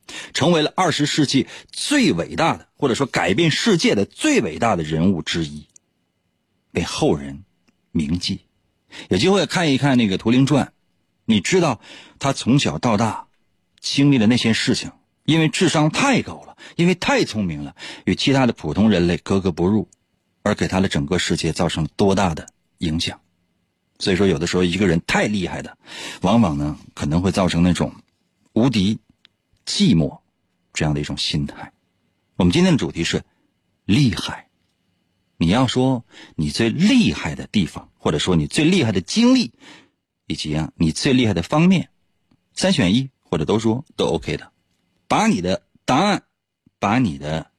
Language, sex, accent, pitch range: Chinese, male, native, 85-145 Hz